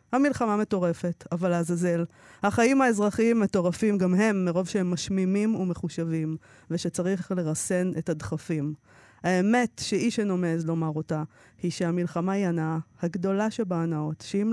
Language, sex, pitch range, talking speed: Hebrew, female, 165-205 Hz, 125 wpm